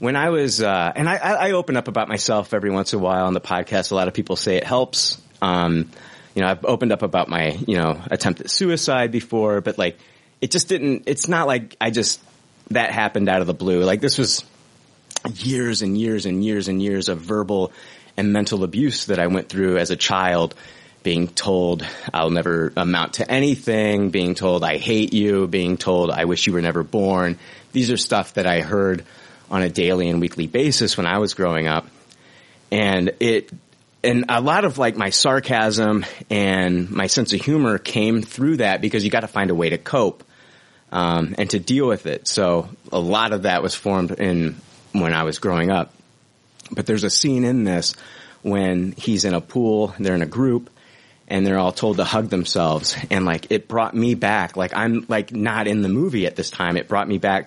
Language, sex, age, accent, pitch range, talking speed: English, male, 30-49, American, 90-115 Hz, 210 wpm